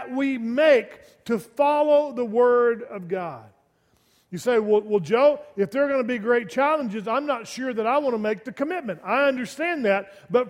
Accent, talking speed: American, 200 wpm